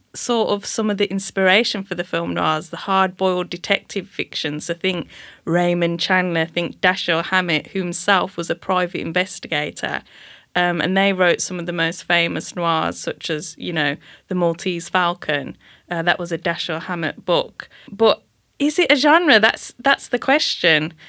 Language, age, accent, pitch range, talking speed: English, 10-29, British, 175-225 Hz, 170 wpm